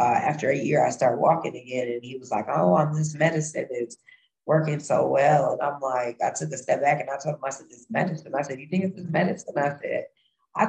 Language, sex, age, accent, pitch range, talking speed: English, female, 20-39, American, 125-150 Hz, 260 wpm